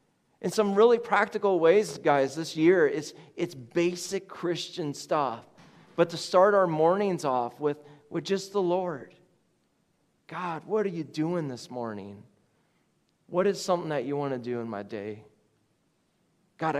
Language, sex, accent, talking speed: English, male, American, 150 wpm